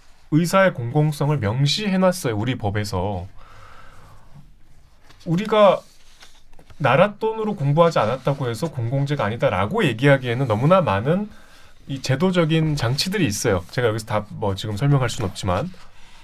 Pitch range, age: 105-175 Hz, 30-49